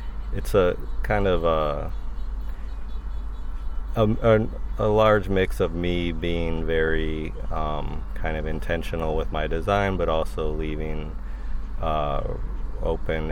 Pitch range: 70-85 Hz